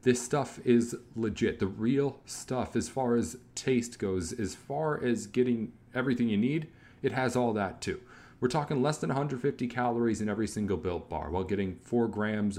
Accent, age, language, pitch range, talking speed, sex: American, 40-59, English, 105-130 Hz, 185 wpm, male